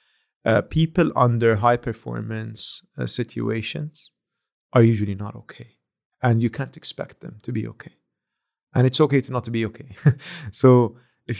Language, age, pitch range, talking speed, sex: English, 30-49, 115-150 Hz, 155 wpm, male